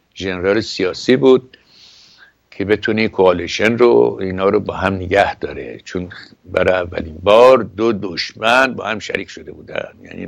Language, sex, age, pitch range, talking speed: Persian, male, 60-79, 95-125 Hz, 145 wpm